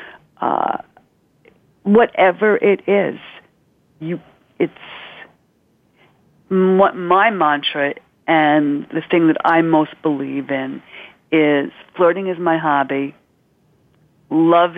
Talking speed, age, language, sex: 95 wpm, 50-69, English, female